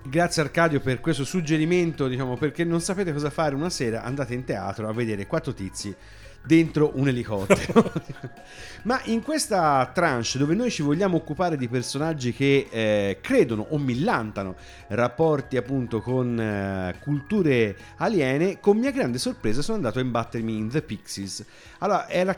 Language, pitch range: Italian, 110-150 Hz